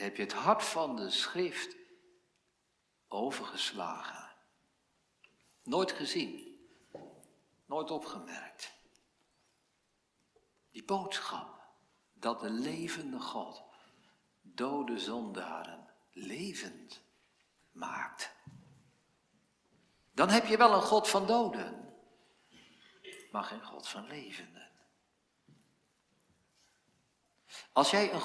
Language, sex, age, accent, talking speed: Dutch, male, 60-79, Dutch, 80 wpm